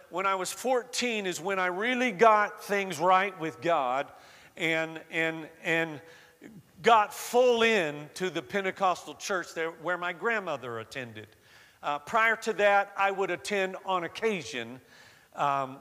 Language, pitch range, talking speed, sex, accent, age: English, 165-215 Hz, 145 wpm, male, American, 50-69